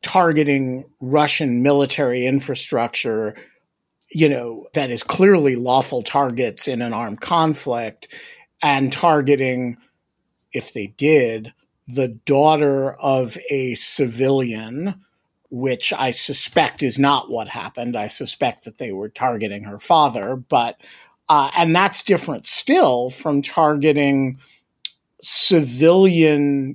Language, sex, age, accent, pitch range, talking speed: English, male, 50-69, American, 120-150 Hz, 110 wpm